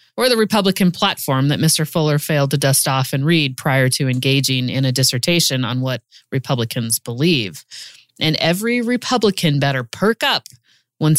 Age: 30-49